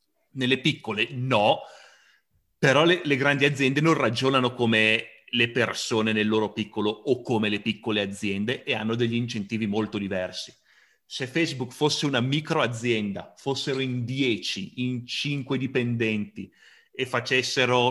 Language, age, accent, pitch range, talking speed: Italian, 30-49, native, 115-140 Hz, 135 wpm